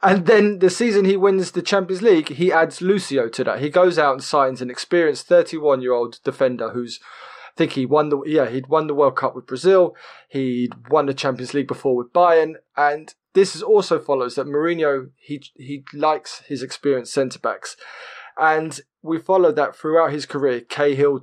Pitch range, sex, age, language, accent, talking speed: 130-165 Hz, male, 20-39, English, British, 195 wpm